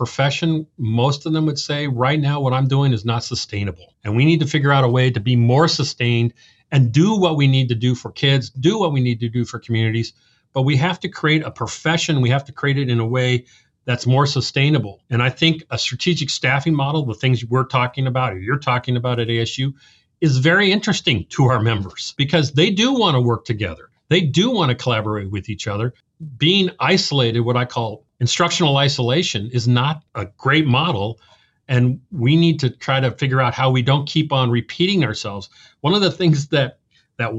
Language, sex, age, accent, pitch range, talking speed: English, male, 40-59, American, 120-160 Hz, 215 wpm